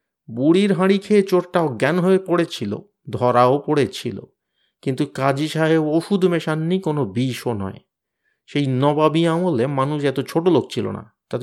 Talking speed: 140 wpm